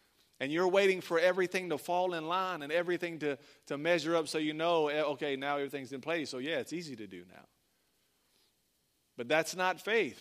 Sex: male